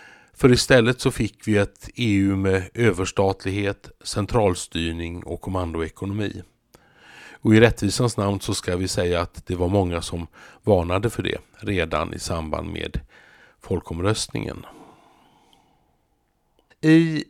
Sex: male